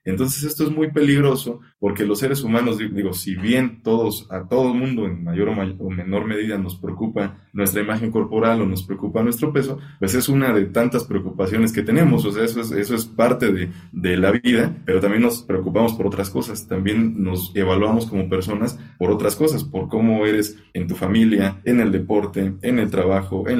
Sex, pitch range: male, 95-115 Hz